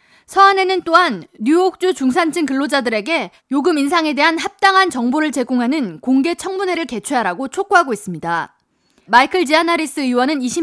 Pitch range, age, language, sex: 240-330 Hz, 20-39, Korean, female